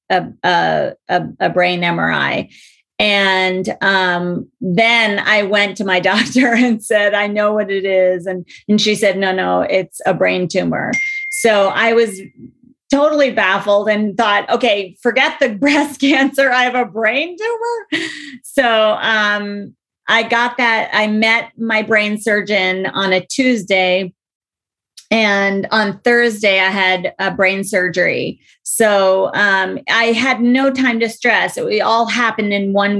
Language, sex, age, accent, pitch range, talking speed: English, female, 30-49, American, 190-235 Hz, 145 wpm